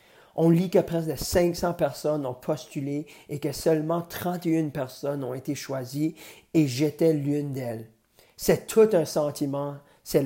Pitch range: 140-180 Hz